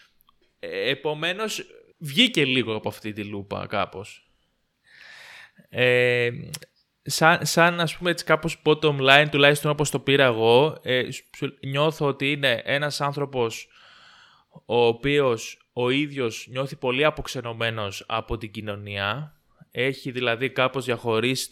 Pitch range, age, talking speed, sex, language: 115-155 Hz, 20-39, 110 wpm, male, Greek